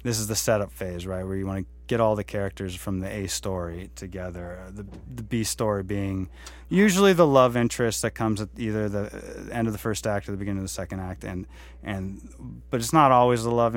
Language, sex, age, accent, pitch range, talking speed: English, male, 30-49, American, 90-115 Hz, 230 wpm